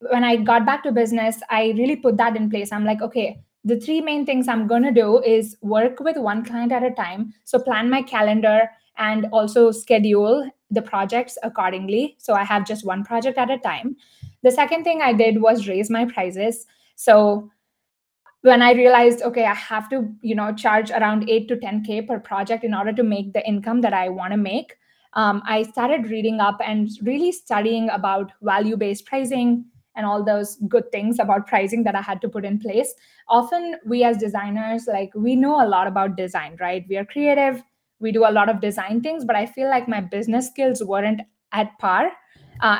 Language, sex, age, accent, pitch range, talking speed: English, female, 20-39, Indian, 210-245 Hz, 205 wpm